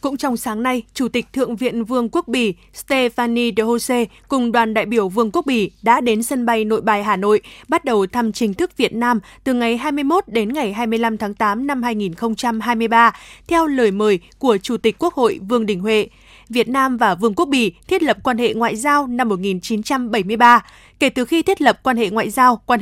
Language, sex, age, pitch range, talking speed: Vietnamese, female, 20-39, 225-265 Hz, 215 wpm